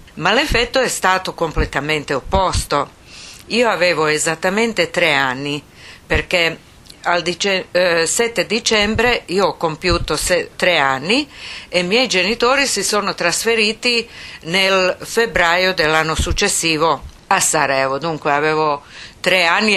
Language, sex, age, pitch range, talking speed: Italian, female, 50-69, 155-200 Hz, 110 wpm